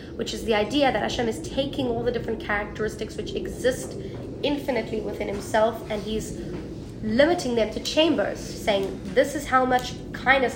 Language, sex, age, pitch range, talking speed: English, female, 20-39, 210-270 Hz, 165 wpm